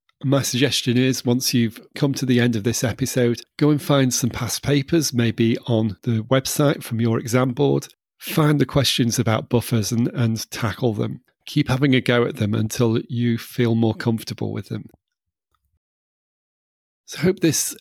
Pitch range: 115-135 Hz